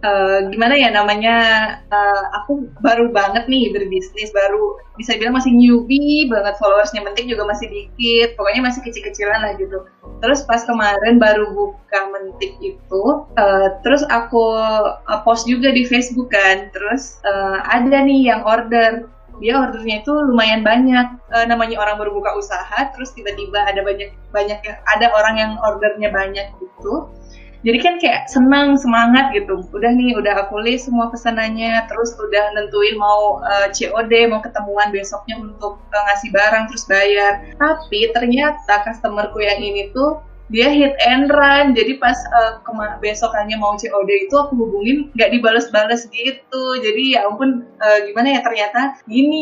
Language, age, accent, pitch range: Indonesian, 20-39, native, 210-250 Hz